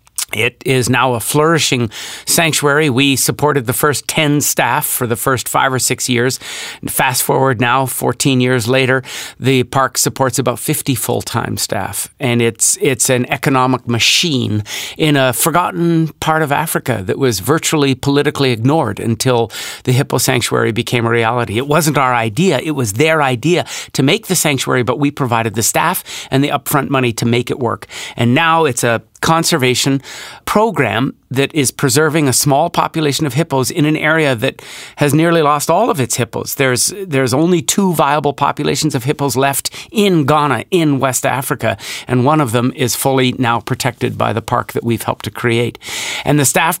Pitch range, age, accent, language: 125-150 Hz, 50-69, American, English